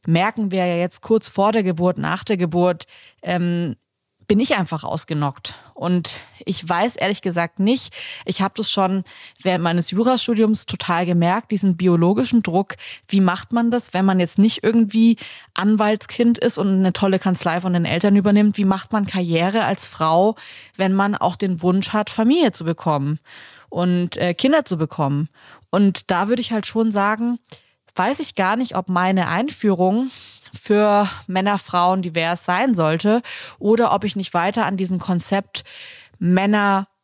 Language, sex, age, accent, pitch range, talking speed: German, female, 20-39, German, 175-210 Hz, 165 wpm